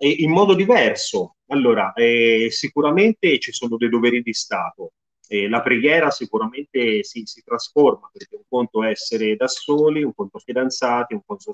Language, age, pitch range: Italian, 30-49, 105-150 Hz